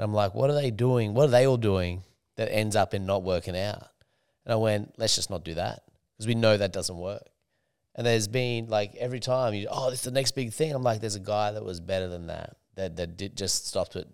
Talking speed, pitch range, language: 255 wpm, 95-110 Hz, English